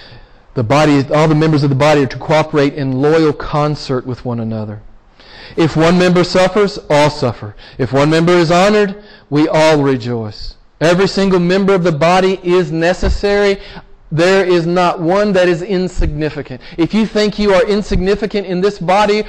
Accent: American